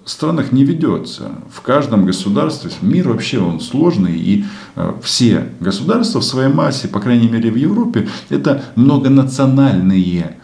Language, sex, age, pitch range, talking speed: Russian, male, 40-59, 85-115 Hz, 130 wpm